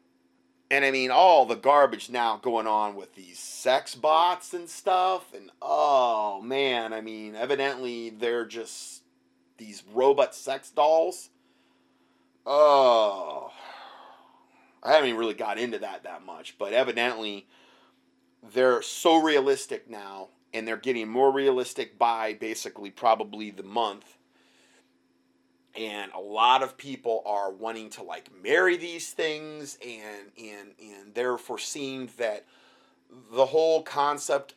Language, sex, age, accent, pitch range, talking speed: English, male, 30-49, American, 105-145 Hz, 130 wpm